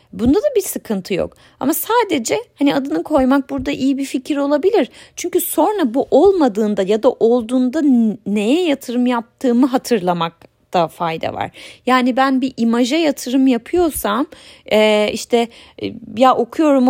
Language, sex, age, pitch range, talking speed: Turkish, female, 30-49, 195-285 Hz, 140 wpm